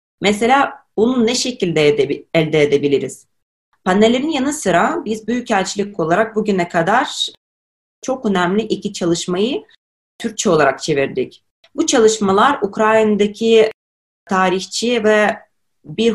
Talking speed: 105 wpm